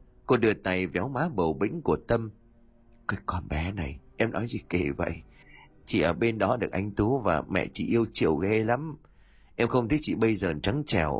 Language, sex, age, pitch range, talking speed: Vietnamese, male, 30-49, 85-125 Hz, 215 wpm